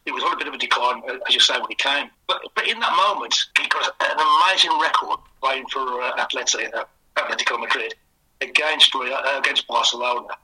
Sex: male